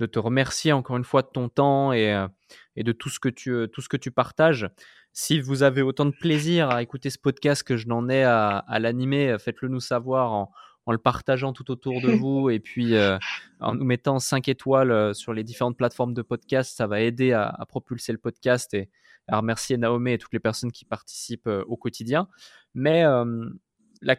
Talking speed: 215 wpm